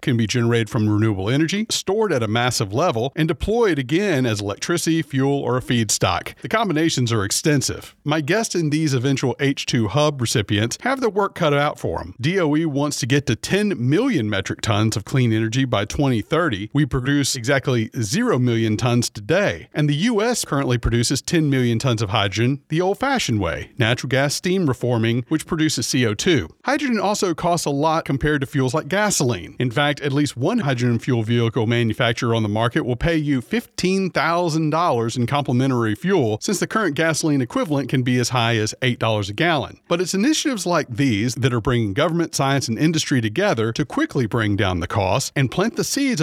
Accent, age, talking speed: American, 40-59, 190 wpm